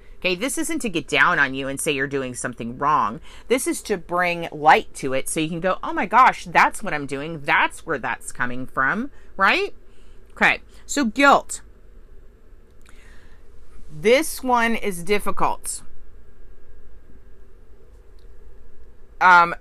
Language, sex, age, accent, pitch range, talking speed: English, female, 30-49, American, 155-235 Hz, 140 wpm